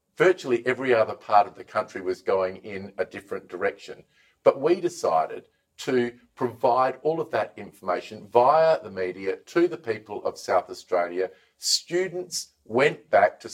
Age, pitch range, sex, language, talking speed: 50-69, 110-150 Hz, male, English, 155 wpm